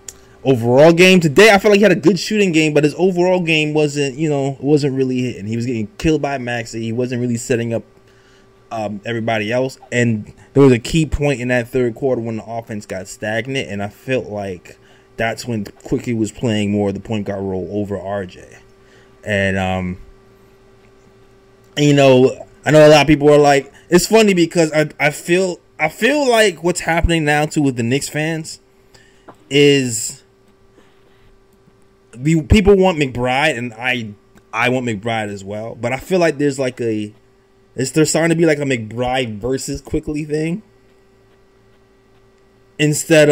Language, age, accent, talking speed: English, 20-39, American, 175 wpm